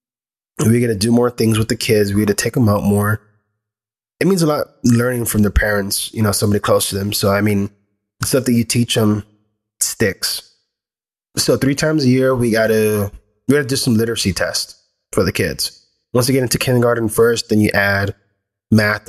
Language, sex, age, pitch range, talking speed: English, male, 20-39, 100-125 Hz, 200 wpm